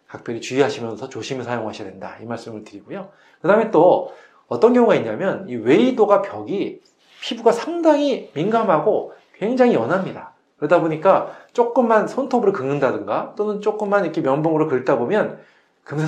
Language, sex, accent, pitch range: Korean, male, native, 130-210 Hz